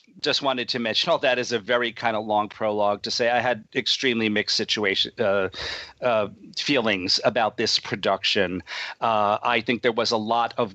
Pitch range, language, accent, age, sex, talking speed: 105-125 Hz, English, American, 40-59, male, 190 wpm